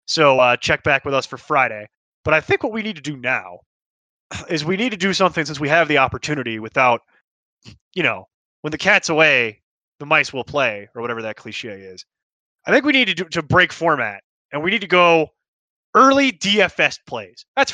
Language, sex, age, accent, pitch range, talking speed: English, male, 20-39, American, 150-220 Hz, 205 wpm